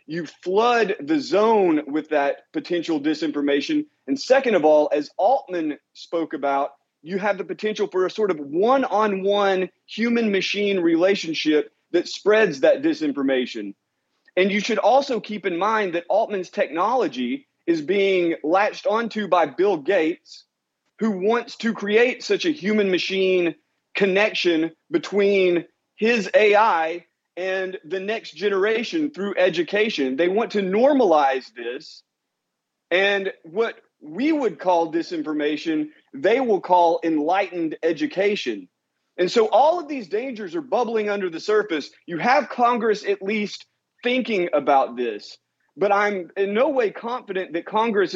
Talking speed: 135 wpm